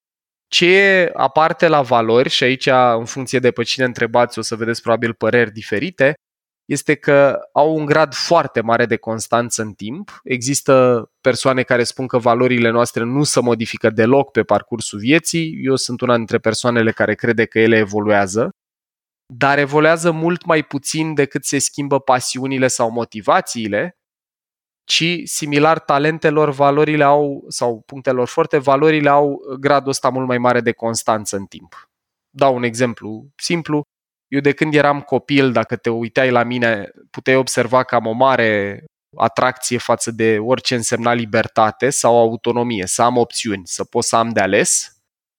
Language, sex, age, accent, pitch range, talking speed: Romanian, male, 20-39, native, 115-145 Hz, 160 wpm